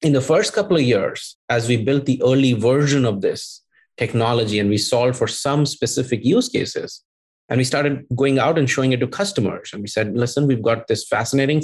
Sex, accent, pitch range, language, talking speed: male, Indian, 110-135 Hz, English, 210 wpm